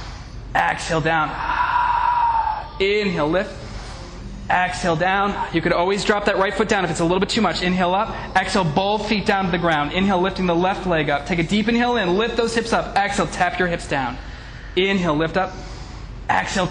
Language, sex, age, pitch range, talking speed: English, male, 20-39, 185-230 Hz, 195 wpm